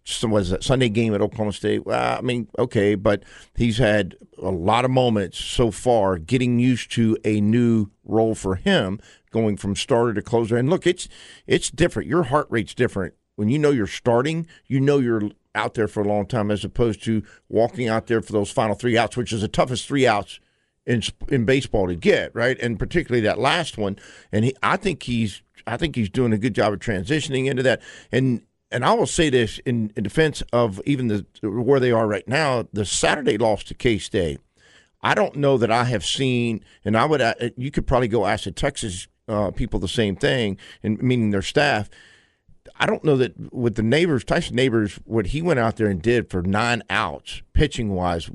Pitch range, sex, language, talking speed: 105-130 Hz, male, English, 210 wpm